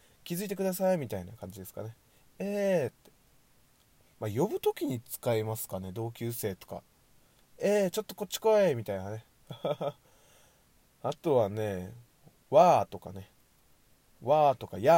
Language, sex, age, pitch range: Japanese, male, 20-39, 110-175 Hz